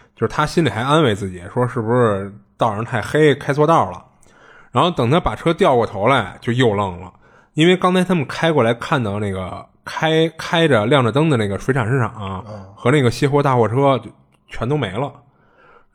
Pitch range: 100-145 Hz